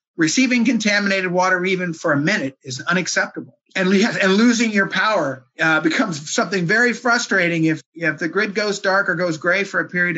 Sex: male